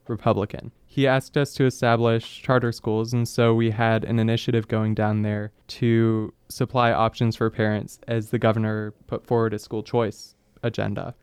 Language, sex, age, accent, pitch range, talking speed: English, male, 20-39, American, 110-125 Hz, 165 wpm